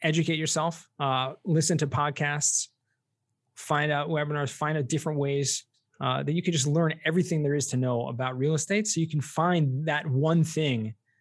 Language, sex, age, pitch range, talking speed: English, male, 20-39, 130-165 Hz, 180 wpm